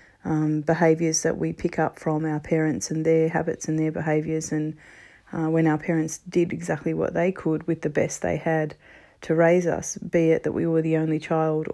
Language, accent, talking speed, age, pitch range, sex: English, Australian, 210 wpm, 30-49, 160-170 Hz, female